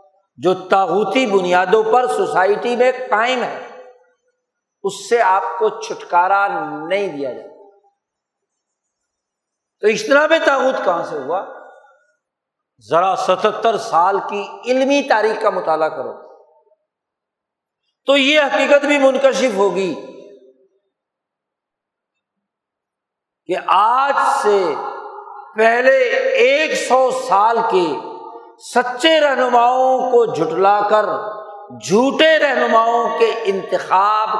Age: 50-69